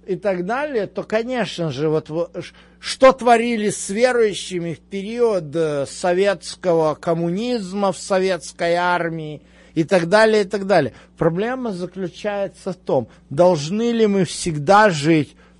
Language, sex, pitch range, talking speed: Russian, male, 140-190 Hz, 125 wpm